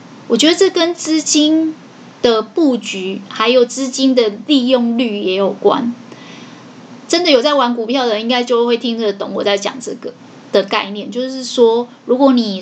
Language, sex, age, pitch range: Chinese, female, 20-39, 210-255 Hz